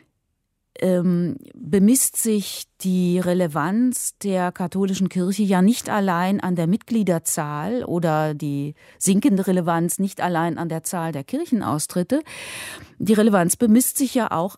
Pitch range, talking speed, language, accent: 175-225 Hz, 130 wpm, German, German